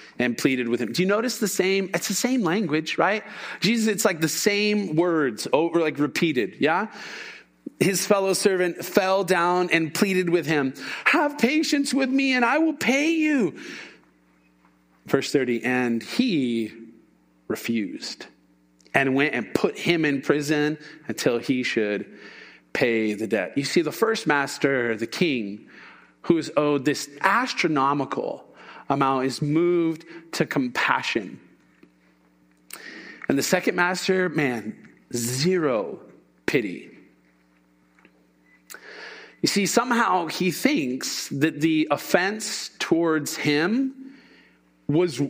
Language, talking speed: English, 125 wpm